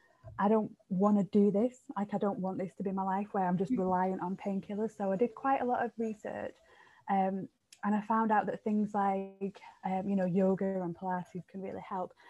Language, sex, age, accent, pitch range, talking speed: English, female, 20-39, British, 190-230 Hz, 225 wpm